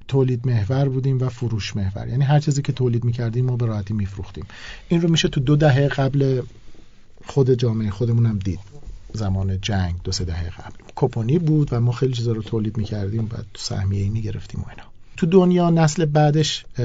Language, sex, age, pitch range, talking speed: Persian, male, 50-69, 105-135 Hz, 190 wpm